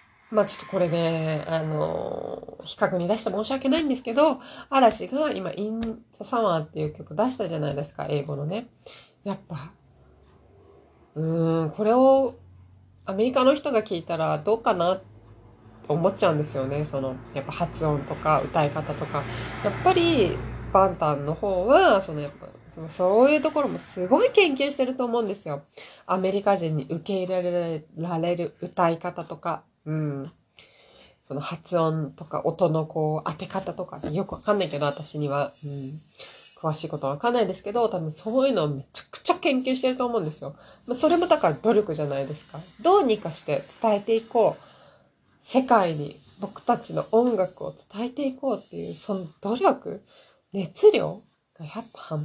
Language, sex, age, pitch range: Japanese, female, 20-39, 150-225 Hz